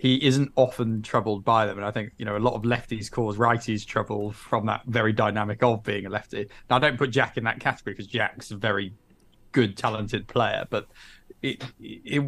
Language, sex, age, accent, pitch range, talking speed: English, male, 20-39, British, 105-120 Hz, 215 wpm